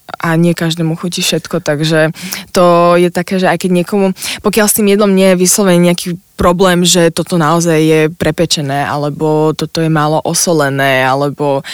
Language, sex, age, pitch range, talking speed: Slovak, female, 20-39, 160-185 Hz, 170 wpm